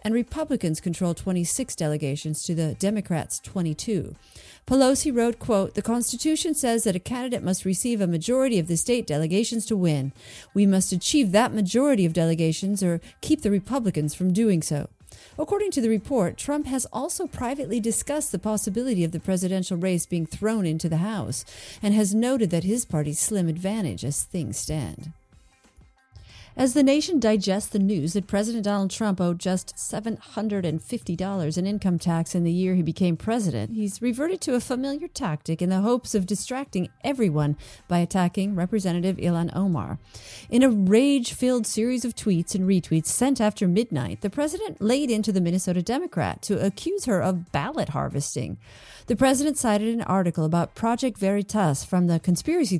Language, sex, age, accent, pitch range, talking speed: English, female, 40-59, American, 170-235 Hz, 165 wpm